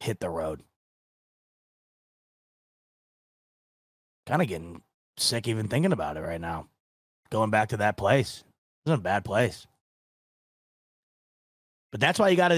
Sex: male